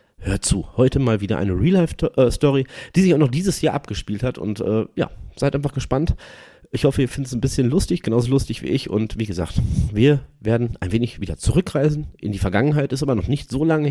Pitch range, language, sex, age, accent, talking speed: 100-140 Hz, German, male, 30-49, German, 220 wpm